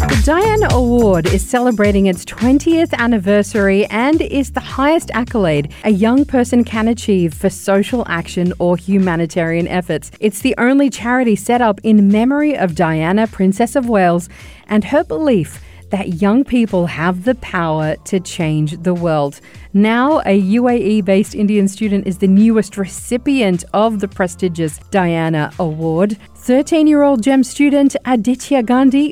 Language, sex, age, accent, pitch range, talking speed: English, female, 40-59, Australian, 185-245 Hz, 140 wpm